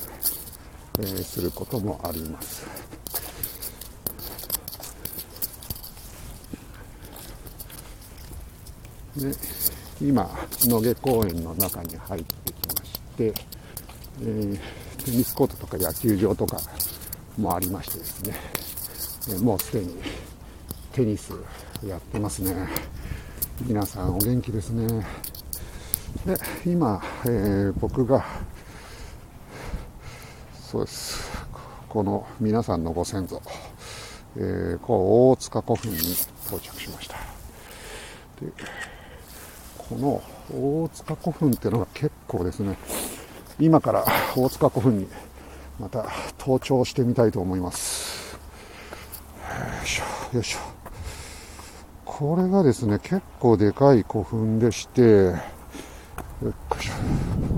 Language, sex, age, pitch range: Japanese, male, 60-79, 85-115 Hz